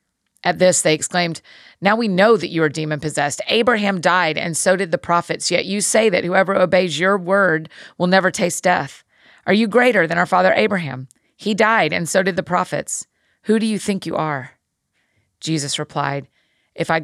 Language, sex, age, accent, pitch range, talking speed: English, female, 40-59, American, 150-185 Hz, 190 wpm